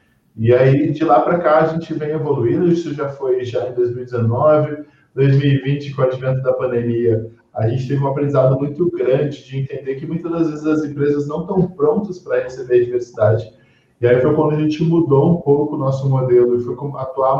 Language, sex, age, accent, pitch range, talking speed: Portuguese, male, 20-39, Brazilian, 125-160 Hz, 200 wpm